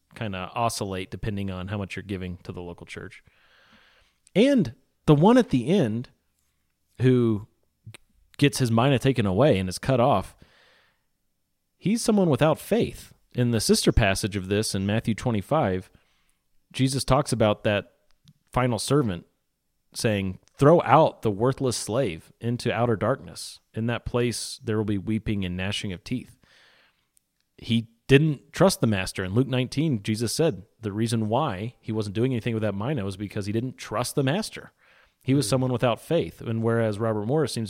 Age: 30-49